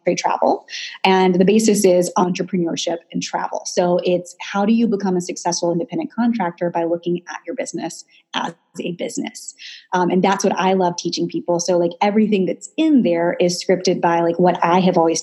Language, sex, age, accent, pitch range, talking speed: English, female, 20-39, American, 175-210 Hz, 190 wpm